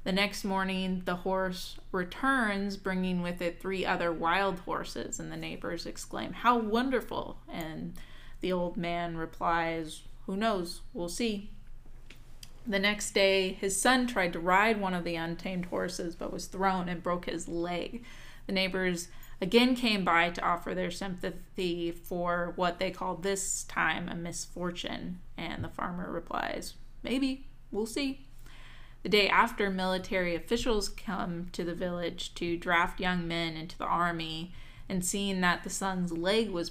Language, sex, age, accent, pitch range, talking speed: English, female, 20-39, American, 170-195 Hz, 155 wpm